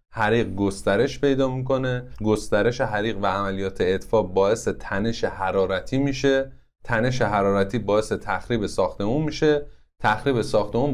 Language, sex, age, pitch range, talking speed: Persian, male, 30-49, 105-135 Hz, 115 wpm